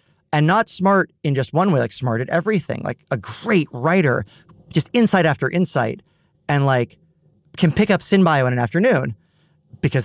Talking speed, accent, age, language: 175 wpm, American, 30-49, English